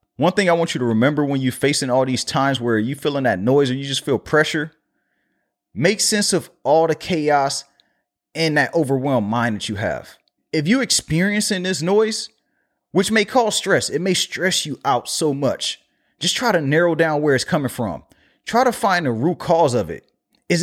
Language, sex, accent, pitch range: English, male, American, 140-195 Hz